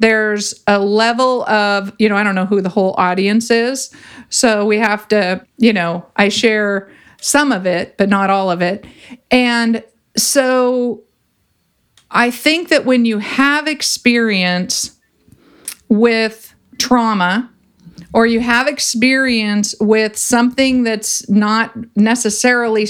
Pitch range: 200-245 Hz